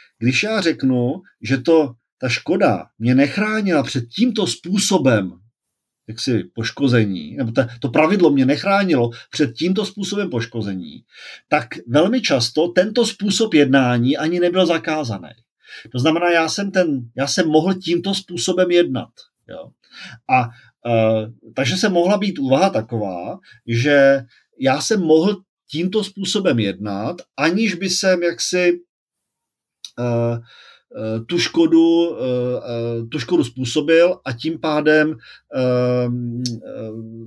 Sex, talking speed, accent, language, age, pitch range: male, 125 wpm, native, Czech, 40-59, 125-175 Hz